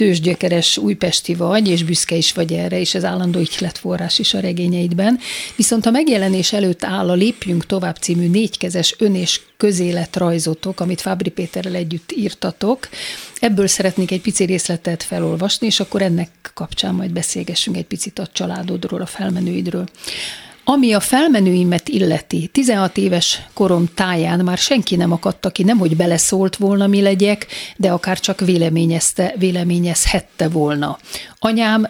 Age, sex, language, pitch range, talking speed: 40-59, female, Hungarian, 175-205 Hz, 145 wpm